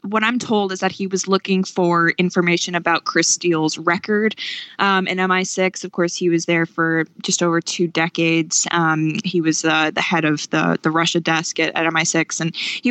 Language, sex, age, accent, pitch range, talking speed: English, female, 20-39, American, 160-190 Hz, 200 wpm